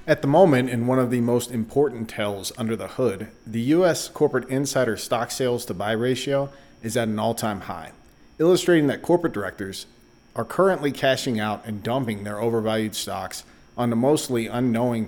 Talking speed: 175 wpm